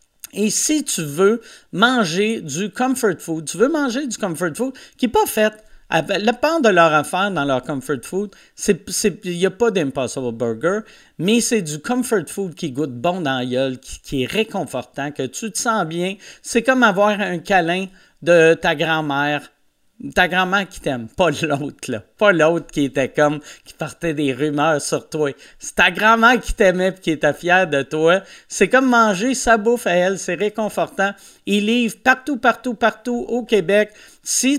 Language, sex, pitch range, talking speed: French, male, 165-230 Hz, 190 wpm